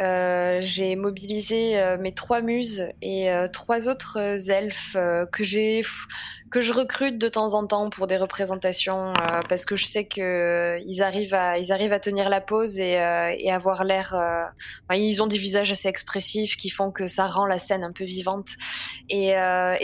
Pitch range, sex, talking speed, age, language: 185-220 Hz, female, 200 wpm, 20-39, French